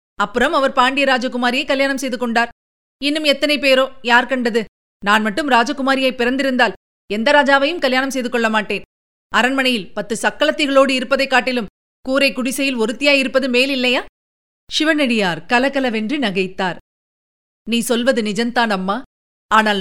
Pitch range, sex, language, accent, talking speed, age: 220-275 Hz, female, Tamil, native, 120 wpm, 30-49